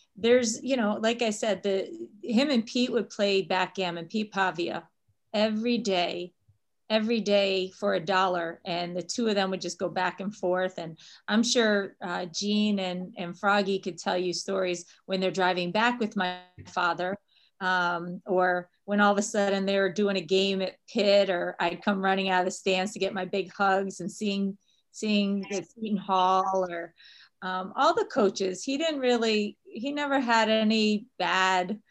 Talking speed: 185 wpm